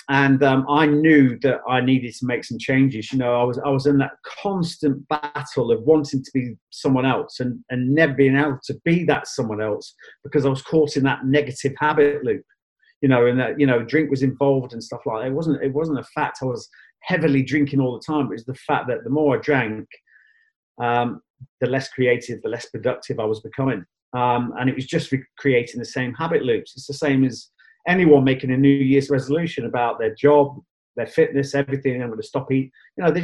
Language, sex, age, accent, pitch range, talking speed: English, male, 30-49, British, 130-150 Hz, 225 wpm